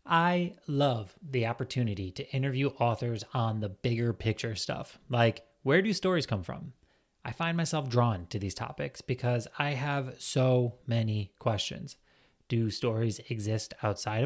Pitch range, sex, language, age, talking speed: 110-145 Hz, male, English, 30-49, 145 wpm